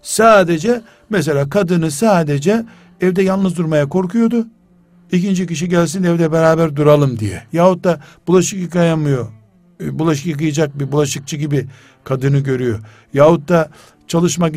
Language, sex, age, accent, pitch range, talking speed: Turkish, male, 60-79, native, 135-185 Hz, 120 wpm